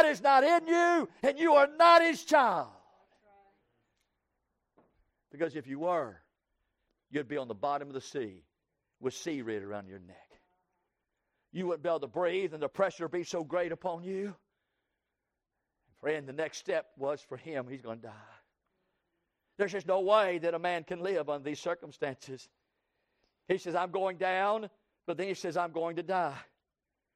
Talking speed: 170 wpm